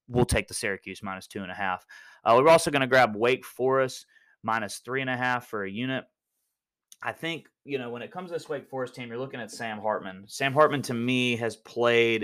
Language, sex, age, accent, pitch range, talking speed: English, male, 30-49, American, 105-130 Hz, 235 wpm